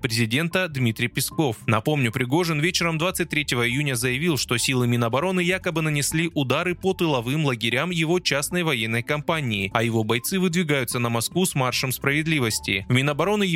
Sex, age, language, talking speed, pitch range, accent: male, 20-39, Russian, 140 wpm, 125-180 Hz, native